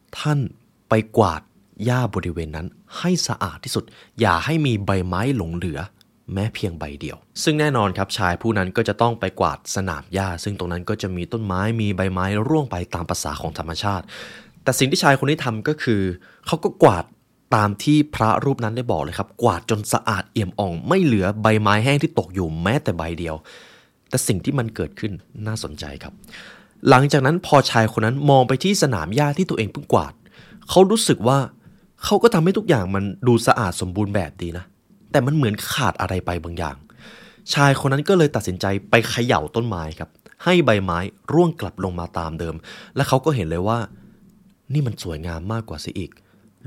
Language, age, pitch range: Thai, 20-39, 90-135 Hz